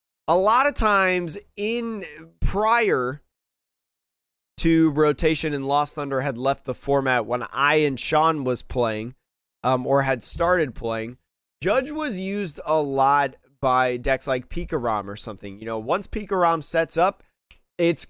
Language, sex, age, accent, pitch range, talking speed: English, male, 20-39, American, 130-170 Hz, 145 wpm